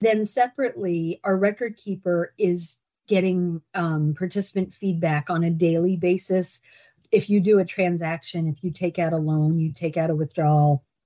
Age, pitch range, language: 50-69, 165-200 Hz, English